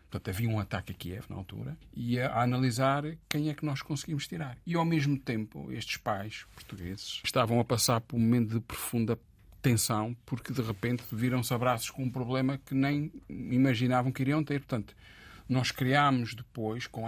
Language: Portuguese